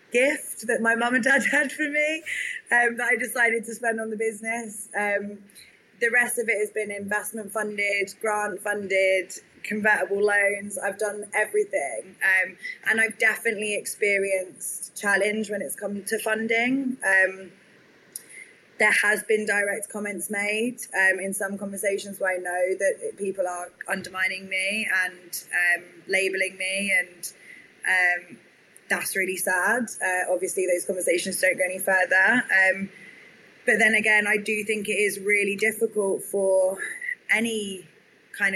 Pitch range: 190-220 Hz